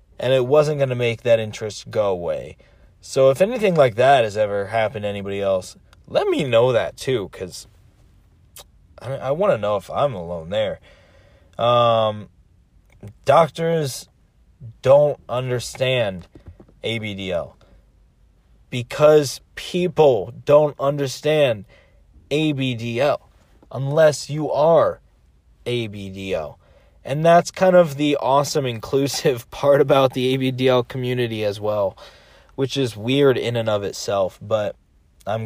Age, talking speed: 30-49, 125 wpm